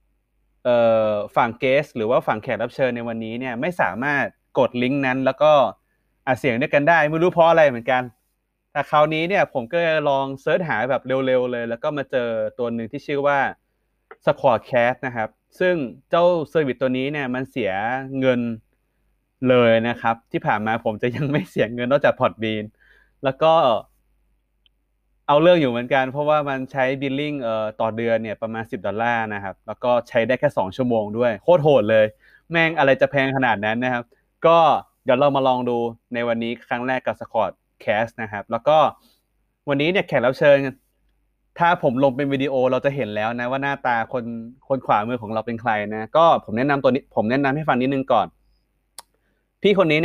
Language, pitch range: Thai, 115-140 Hz